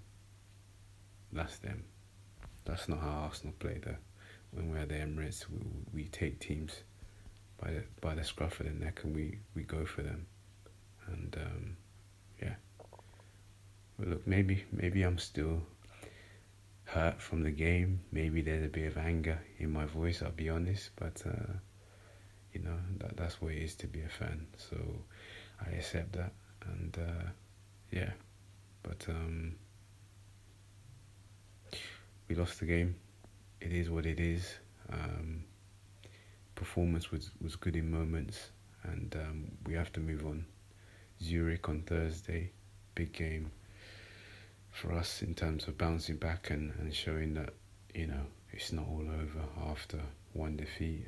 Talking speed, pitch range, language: 150 wpm, 80-100 Hz, English